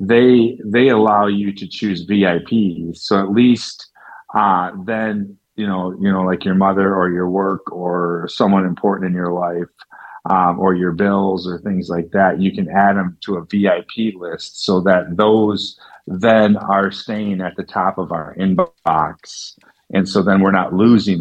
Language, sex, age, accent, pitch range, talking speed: English, male, 40-59, American, 90-105 Hz, 175 wpm